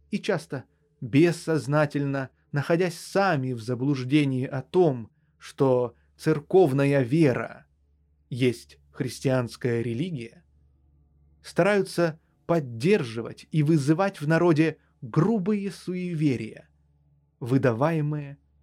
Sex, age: male, 20-39